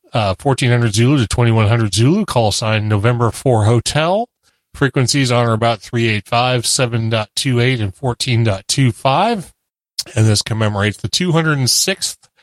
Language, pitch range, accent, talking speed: English, 110-140 Hz, American, 115 wpm